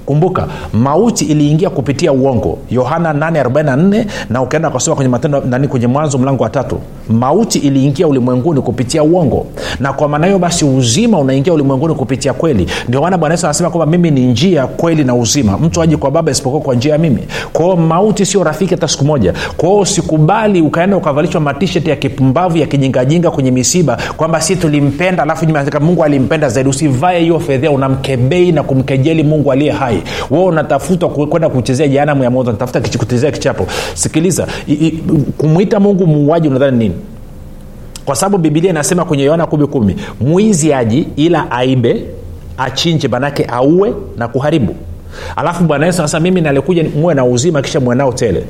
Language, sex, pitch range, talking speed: Swahili, male, 130-170 Hz, 155 wpm